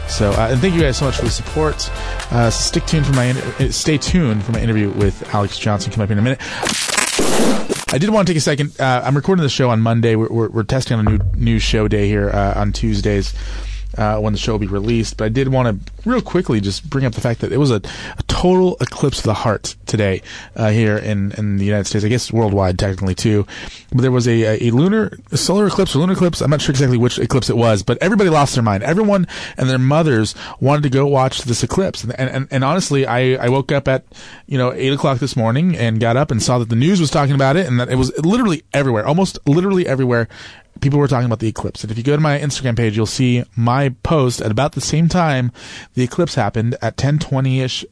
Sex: male